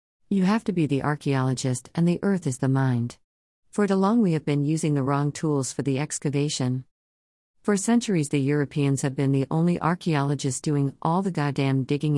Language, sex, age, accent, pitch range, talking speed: English, female, 50-69, American, 130-165 Hz, 190 wpm